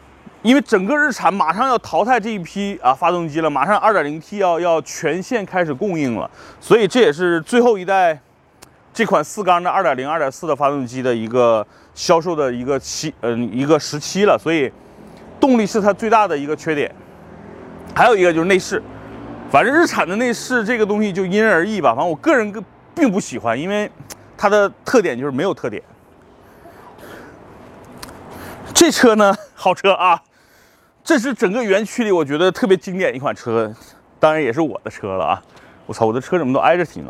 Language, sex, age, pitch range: Chinese, male, 30-49, 155-220 Hz